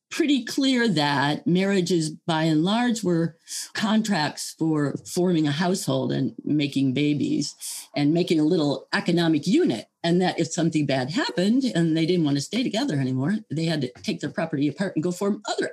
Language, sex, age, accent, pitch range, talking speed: English, female, 50-69, American, 155-220 Hz, 180 wpm